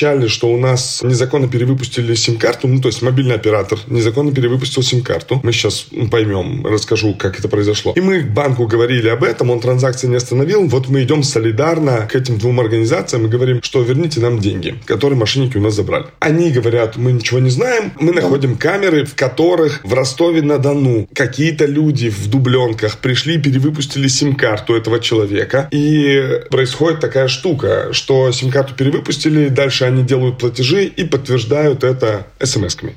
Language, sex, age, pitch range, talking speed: Russian, male, 20-39, 120-150 Hz, 160 wpm